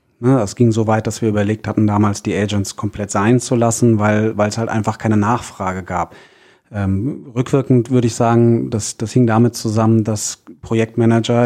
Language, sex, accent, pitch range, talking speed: German, male, German, 105-120 Hz, 185 wpm